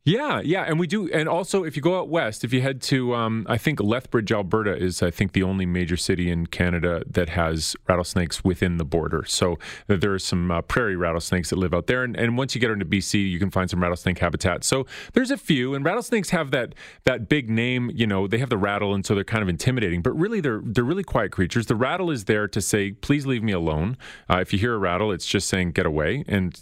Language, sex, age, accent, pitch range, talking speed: English, male, 30-49, American, 90-130 Hz, 250 wpm